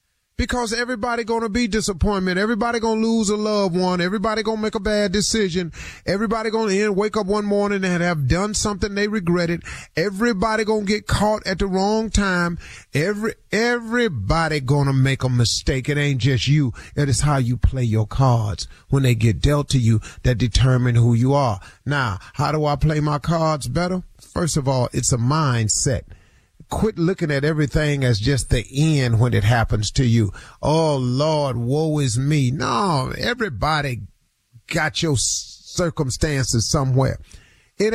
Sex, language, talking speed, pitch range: male, English, 165 wpm, 125-190 Hz